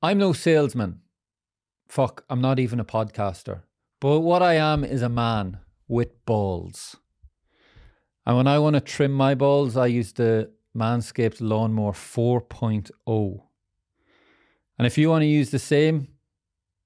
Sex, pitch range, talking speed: male, 105-130 Hz, 140 wpm